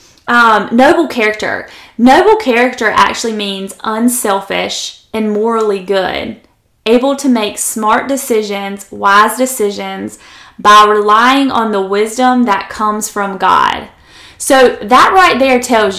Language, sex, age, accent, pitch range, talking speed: English, female, 20-39, American, 210-255 Hz, 115 wpm